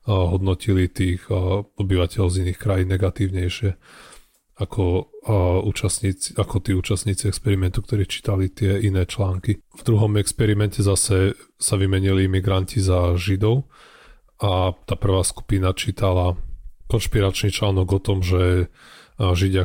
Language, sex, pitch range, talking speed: Slovak, male, 90-100 Hz, 110 wpm